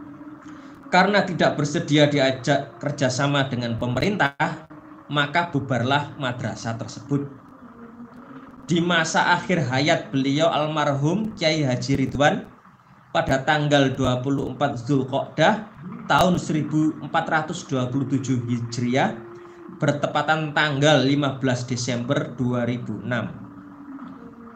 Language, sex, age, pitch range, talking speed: Indonesian, male, 20-39, 130-170 Hz, 80 wpm